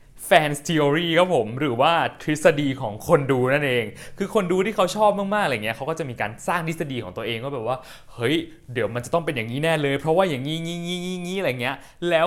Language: Thai